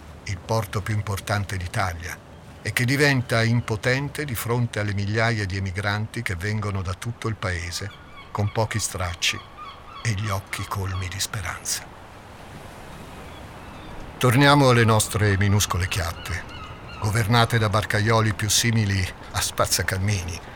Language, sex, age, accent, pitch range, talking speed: Italian, male, 50-69, native, 95-115 Hz, 125 wpm